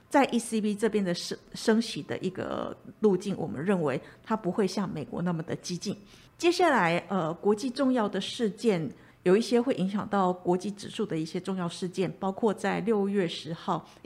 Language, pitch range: Chinese, 180-225 Hz